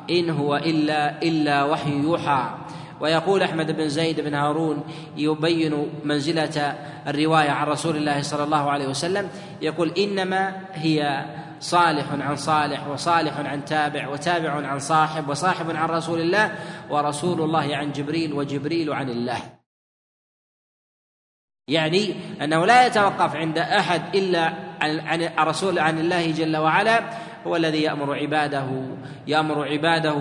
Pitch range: 155-175 Hz